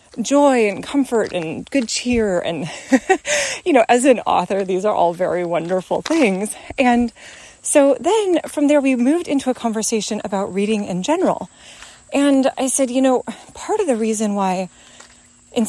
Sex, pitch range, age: female, 205-265 Hz, 30-49